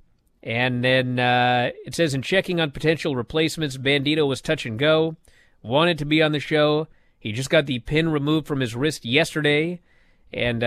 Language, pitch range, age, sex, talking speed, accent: English, 120-165 Hz, 40-59, male, 180 wpm, American